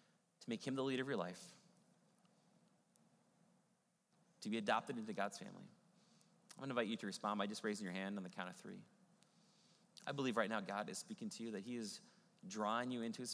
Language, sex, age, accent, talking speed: English, male, 30-49, American, 205 wpm